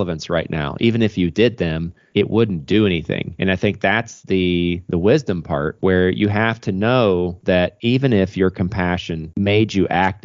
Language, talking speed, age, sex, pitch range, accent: English, 185 wpm, 30-49, male, 90-110 Hz, American